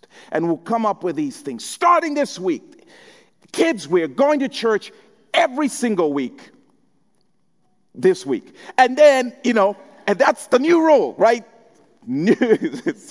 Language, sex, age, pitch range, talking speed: English, male, 40-59, 175-285 Hz, 145 wpm